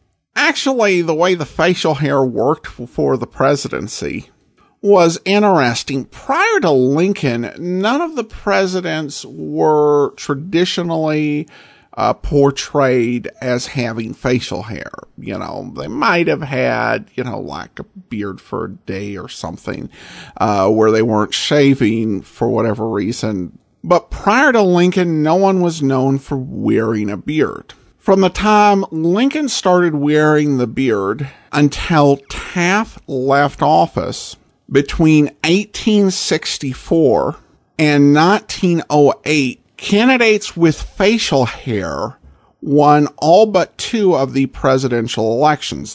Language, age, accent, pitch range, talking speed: English, 50-69, American, 125-180 Hz, 120 wpm